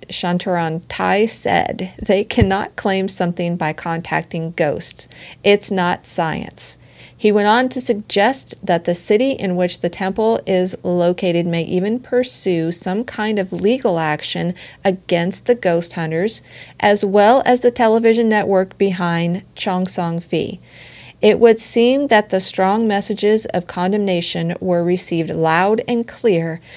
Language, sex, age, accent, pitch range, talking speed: English, female, 40-59, American, 175-215 Hz, 140 wpm